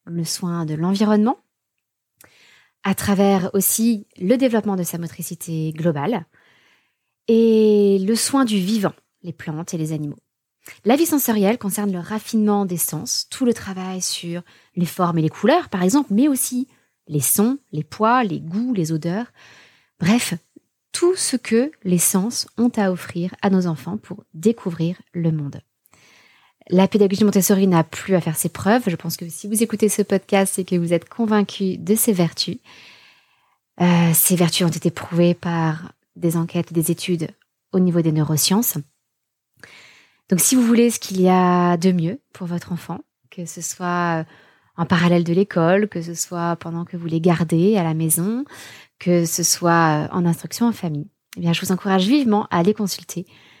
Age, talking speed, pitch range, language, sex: 20-39, 175 wpm, 170-210 Hz, French, female